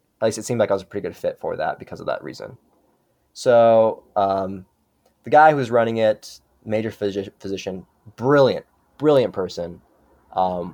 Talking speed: 175 wpm